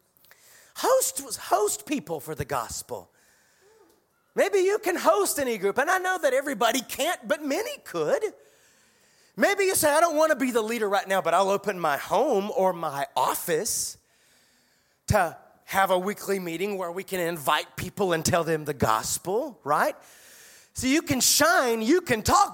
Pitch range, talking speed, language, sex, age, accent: 185-295 Hz, 170 wpm, English, male, 40-59, American